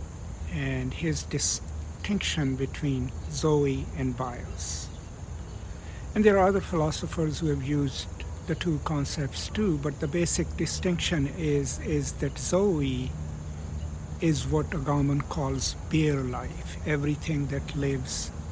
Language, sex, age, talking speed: English, male, 60-79, 120 wpm